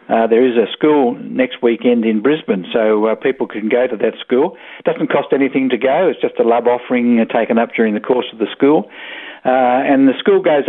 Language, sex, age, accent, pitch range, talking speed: English, male, 50-69, Australian, 110-130 Hz, 230 wpm